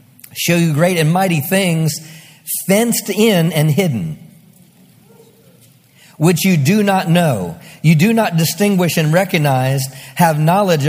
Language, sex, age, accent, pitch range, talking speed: English, male, 40-59, American, 160-195 Hz, 125 wpm